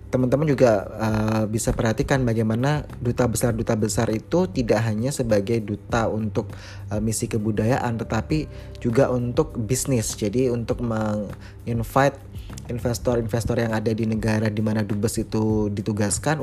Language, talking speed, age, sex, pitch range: Indonesian, 120 wpm, 20-39, male, 105-120 Hz